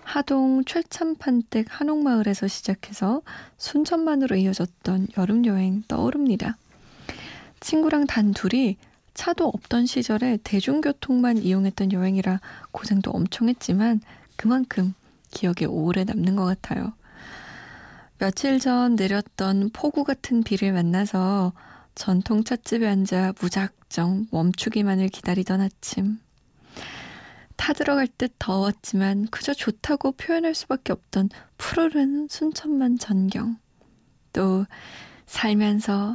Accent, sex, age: native, female, 20-39